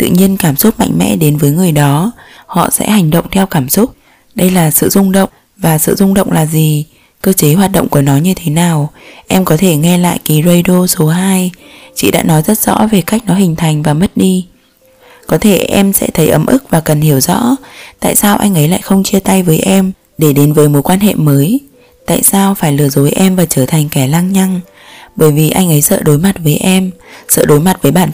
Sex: female